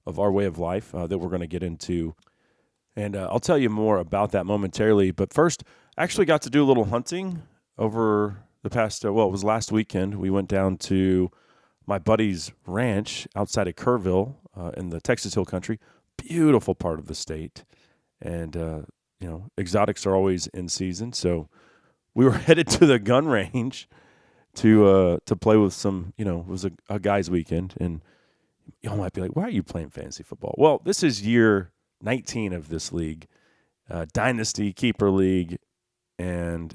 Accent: American